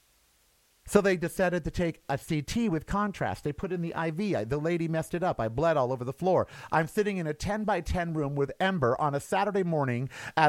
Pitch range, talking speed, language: 125-185 Hz, 230 wpm, English